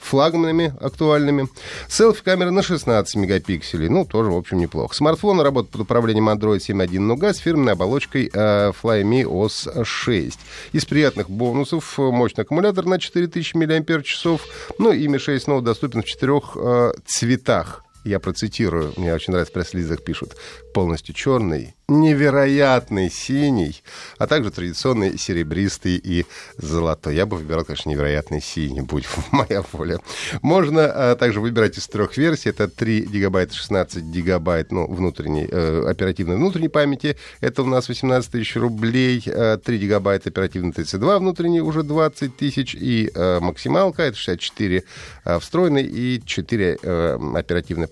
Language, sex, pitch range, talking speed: Russian, male, 90-140 Hz, 140 wpm